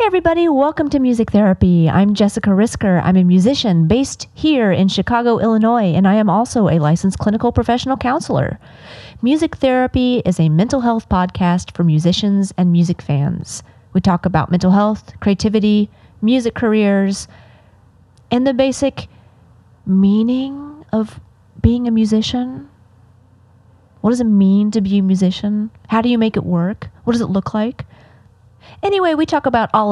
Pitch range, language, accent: 180-235 Hz, English, American